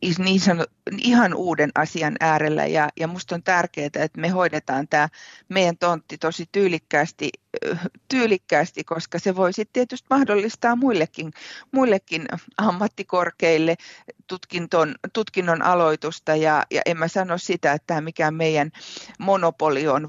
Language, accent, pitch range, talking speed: Finnish, native, 150-185 Hz, 120 wpm